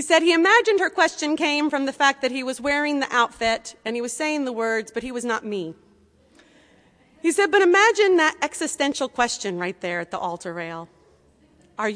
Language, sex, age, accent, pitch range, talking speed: English, female, 40-59, American, 180-270 Hz, 205 wpm